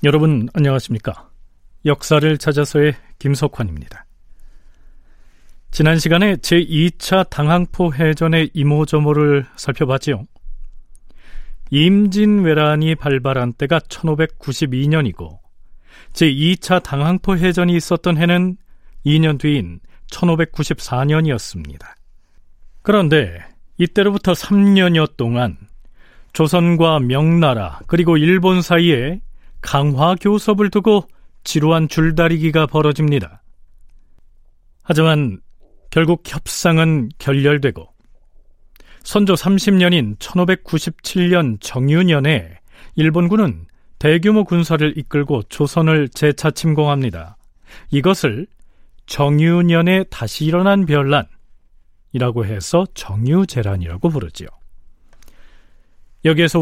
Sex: male